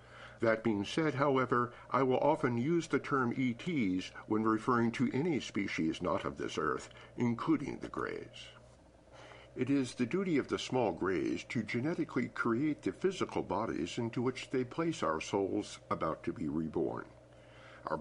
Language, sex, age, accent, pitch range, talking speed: English, male, 50-69, American, 105-140 Hz, 160 wpm